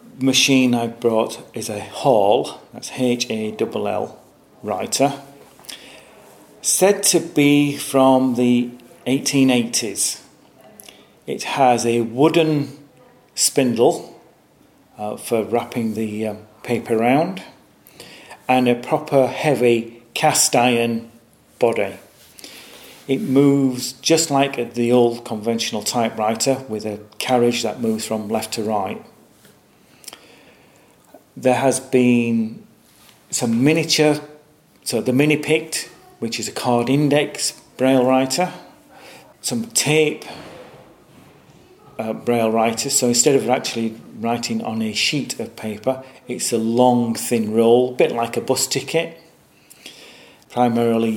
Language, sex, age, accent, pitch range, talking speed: English, male, 40-59, British, 115-135 Hz, 115 wpm